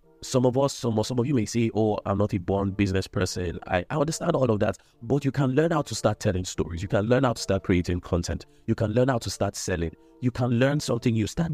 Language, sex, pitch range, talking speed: English, male, 95-120 Hz, 270 wpm